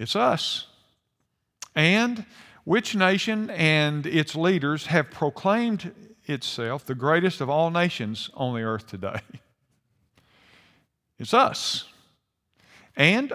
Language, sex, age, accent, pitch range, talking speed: English, male, 50-69, American, 120-160 Hz, 105 wpm